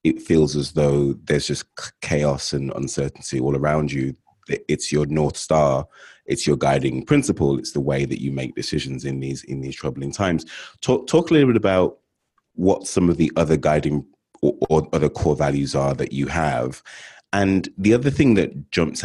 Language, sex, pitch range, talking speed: English, male, 70-85 Hz, 190 wpm